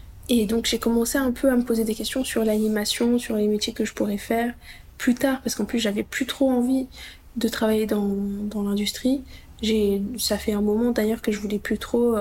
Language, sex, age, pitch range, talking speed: French, female, 20-39, 210-235 Hz, 220 wpm